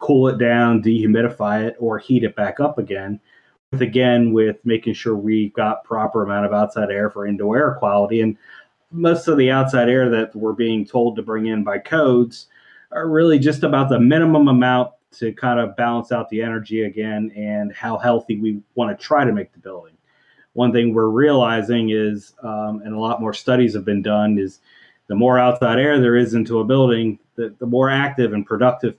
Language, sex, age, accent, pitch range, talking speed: English, male, 30-49, American, 105-125 Hz, 200 wpm